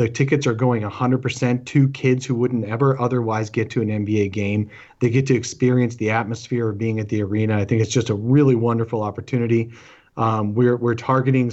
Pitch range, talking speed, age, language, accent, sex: 110-130 Hz, 205 wpm, 30-49, English, American, male